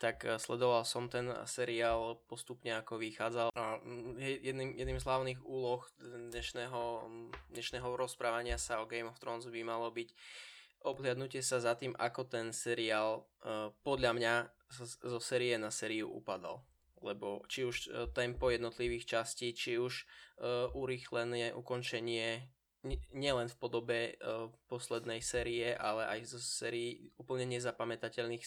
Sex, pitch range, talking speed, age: male, 115-125 Hz, 130 wpm, 10-29